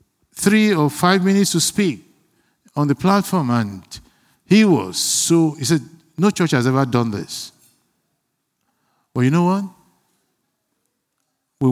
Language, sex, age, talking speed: English, male, 50-69, 135 wpm